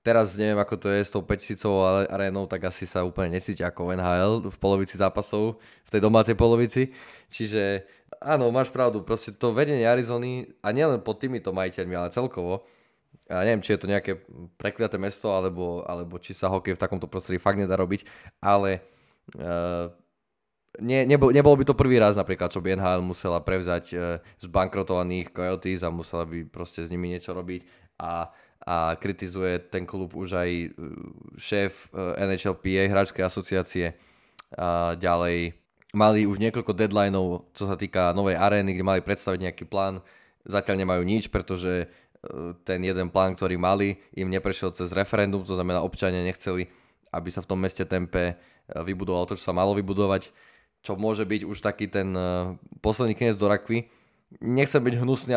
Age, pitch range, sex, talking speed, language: 20-39, 90-105 Hz, male, 165 wpm, Slovak